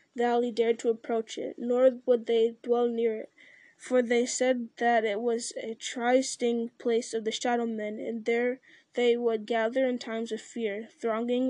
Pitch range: 230-260 Hz